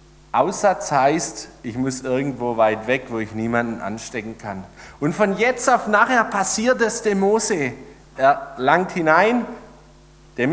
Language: German